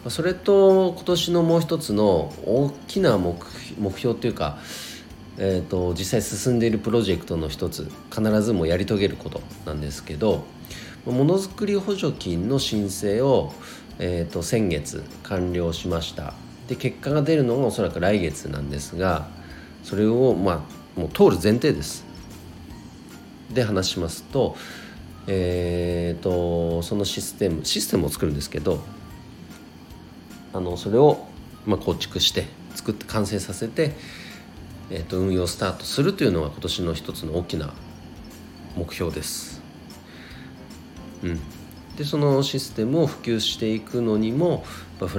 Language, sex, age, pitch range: Japanese, male, 40-59, 80-115 Hz